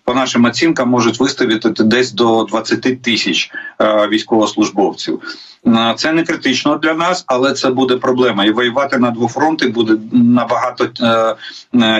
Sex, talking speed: male, 140 wpm